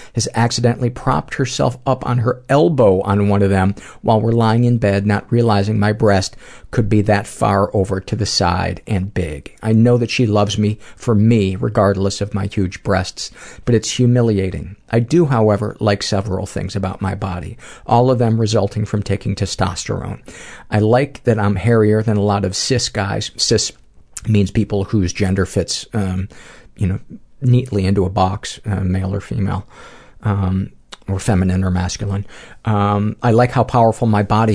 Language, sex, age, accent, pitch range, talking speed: English, male, 50-69, American, 95-115 Hz, 180 wpm